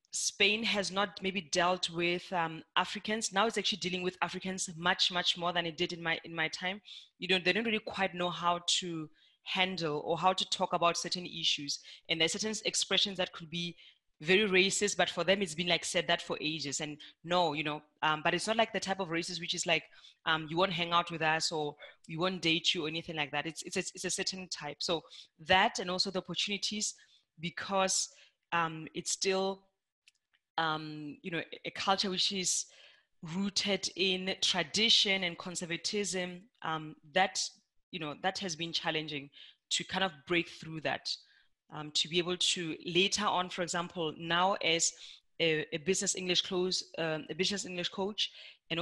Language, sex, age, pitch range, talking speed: English, female, 20-39, 165-190 Hz, 195 wpm